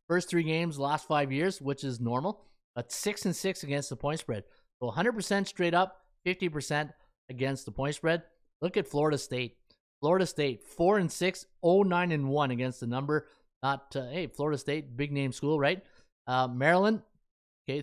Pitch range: 135-170 Hz